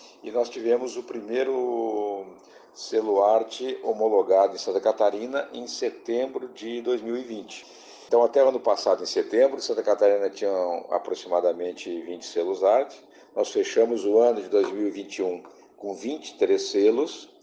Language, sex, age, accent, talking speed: Portuguese, male, 50-69, Brazilian, 130 wpm